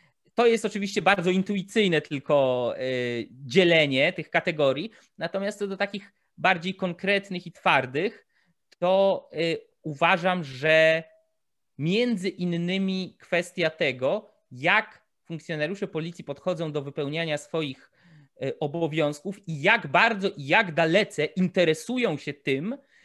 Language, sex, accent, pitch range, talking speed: Polish, male, native, 145-190 Hz, 105 wpm